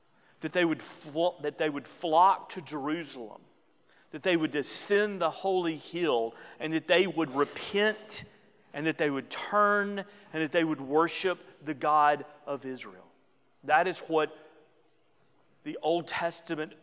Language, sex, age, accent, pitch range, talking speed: English, male, 40-59, American, 140-170 Hz, 140 wpm